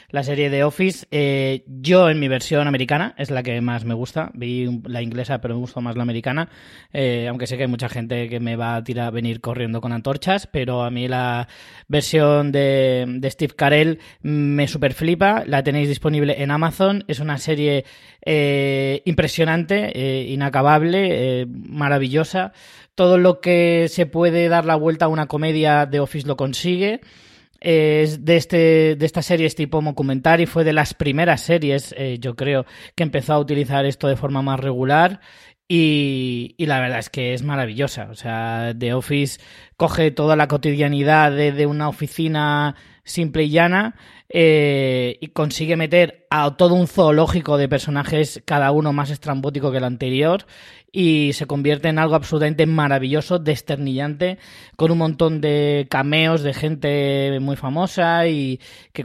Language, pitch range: Spanish, 135-160 Hz